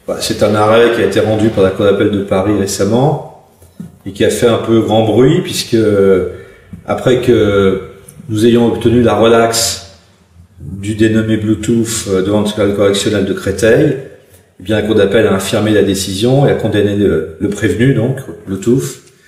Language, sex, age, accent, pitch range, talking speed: French, male, 40-59, French, 100-120 Hz, 170 wpm